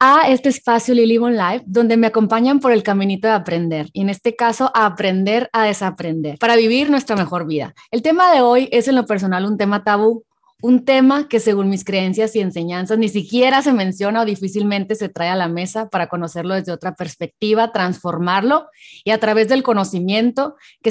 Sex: female